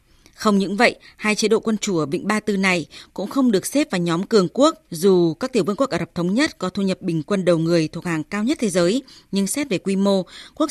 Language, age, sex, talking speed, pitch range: Vietnamese, 20-39, female, 275 wpm, 180-225 Hz